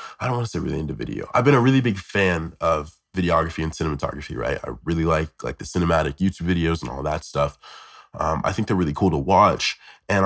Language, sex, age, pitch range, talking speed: English, male, 20-39, 75-95 Hz, 235 wpm